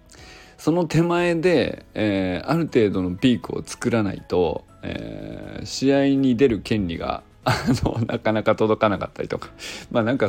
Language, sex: Japanese, male